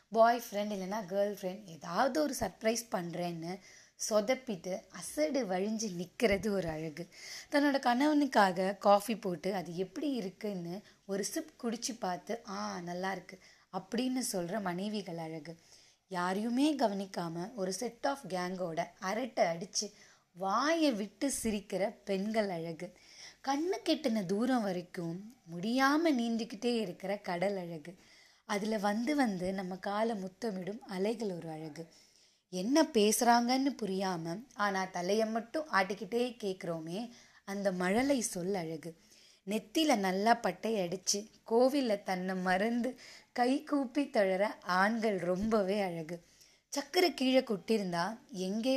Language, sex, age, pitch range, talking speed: Tamil, female, 20-39, 185-240 Hz, 115 wpm